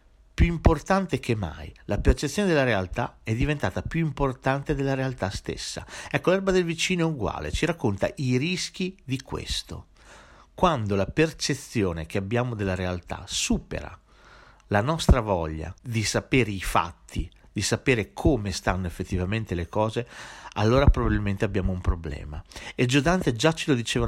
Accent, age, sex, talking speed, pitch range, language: native, 50-69, male, 150 wpm, 95-130 Hz, Italian